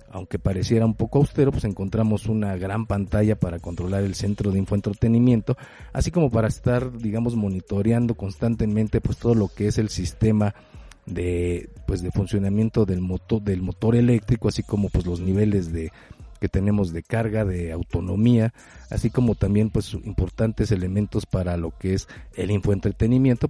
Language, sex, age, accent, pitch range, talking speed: Spanish, male, 50-69, Mexican, 95-115 Hz, 160 wpm